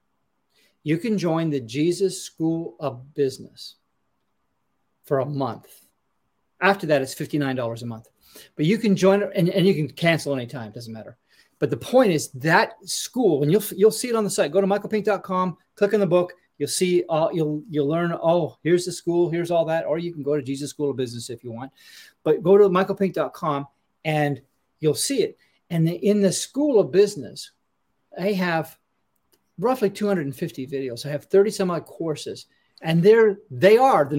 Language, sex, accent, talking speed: English, male, American, 190 wpm